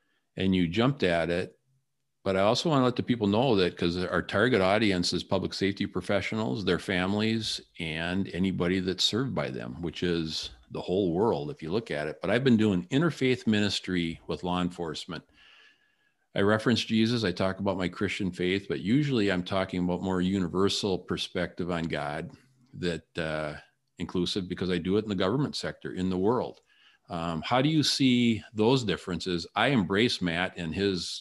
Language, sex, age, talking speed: English, male, 50-69, 185 wpm